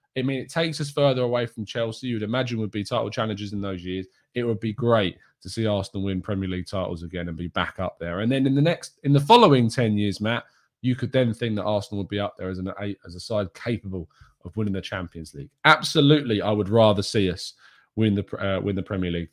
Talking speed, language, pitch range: 250 wpm, English, 105-140 Hz